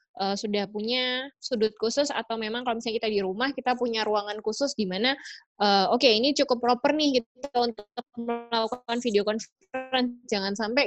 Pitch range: 200-250 Hz